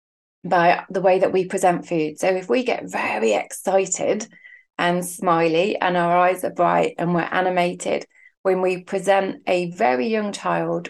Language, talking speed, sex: English, 165 wpm, female